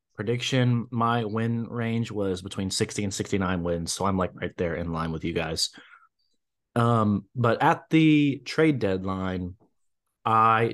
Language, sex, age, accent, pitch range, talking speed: English, male, 30-49, American, 95-115 Hz, 150 wpm